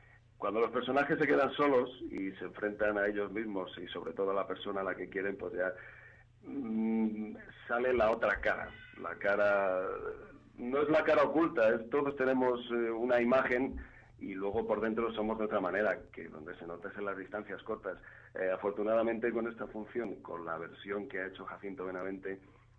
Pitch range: 100-115 Hz